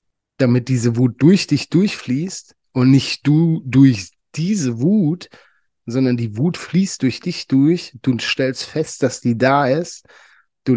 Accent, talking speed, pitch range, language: German, 150 wpm, 120-150 Hz, German